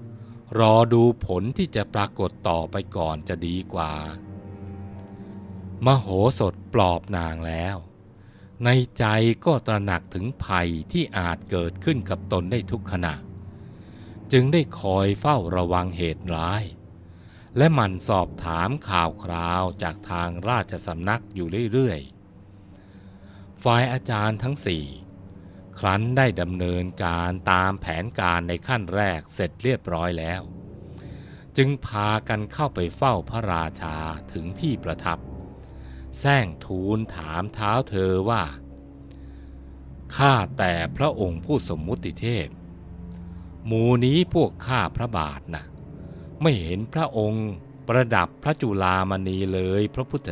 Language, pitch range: Thai, 85-115 Hz